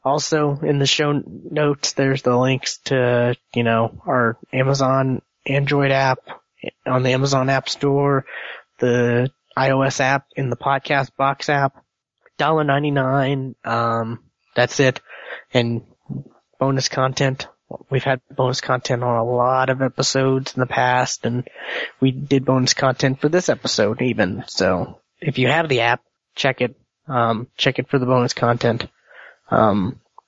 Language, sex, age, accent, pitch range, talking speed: English, male, 20-39, American, 125-140 Hz, 145 wpm